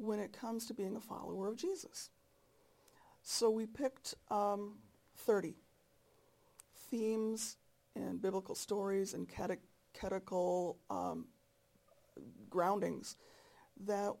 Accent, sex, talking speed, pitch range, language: American, female, 95 wpm, 190-245 Hz, English